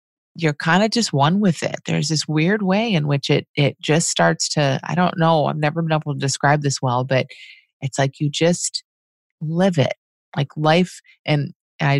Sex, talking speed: female, 200 wpm